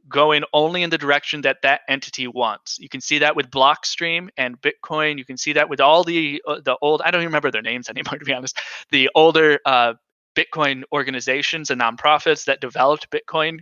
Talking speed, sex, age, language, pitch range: 205 wpm, male, 20-39, English, 135-165 Hz